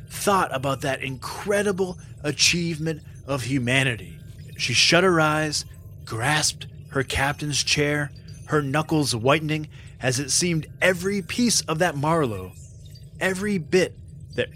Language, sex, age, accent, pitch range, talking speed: English, male, 20-39, American, 135-195 Hz, 120 wpm